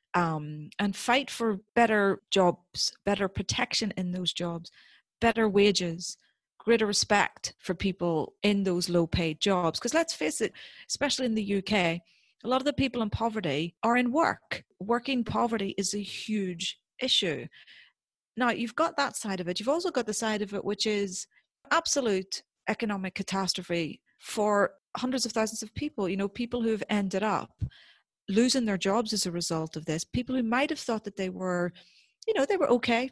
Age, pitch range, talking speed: 40-59, 190-240 Hz, 180 wpm